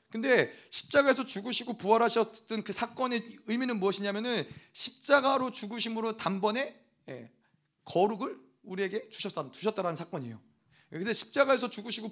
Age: 30-49